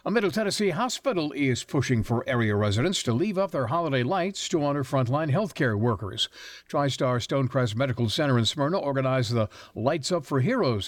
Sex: male